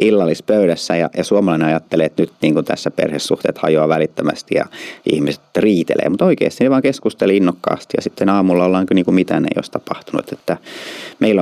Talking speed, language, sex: 170 wpm, Finnish, male